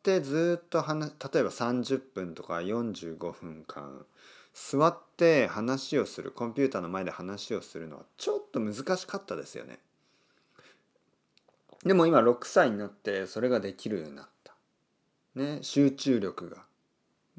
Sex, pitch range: male, 100-170 Hz